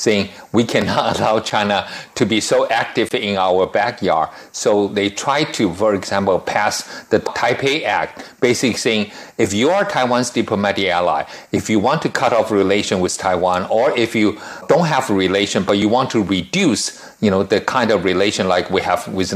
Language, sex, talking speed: German, male, 190 wpm